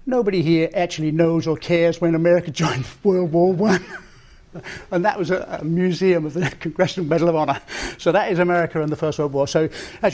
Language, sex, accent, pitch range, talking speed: English, male, British, 145-175 Hz, 205 wpm